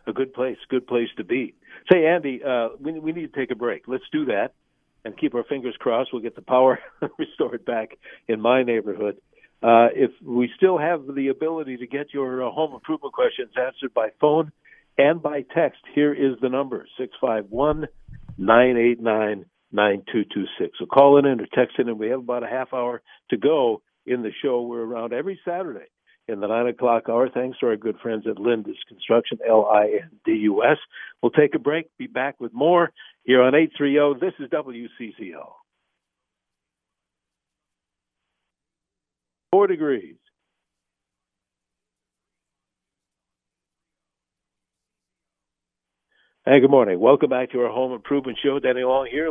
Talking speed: 150 wpm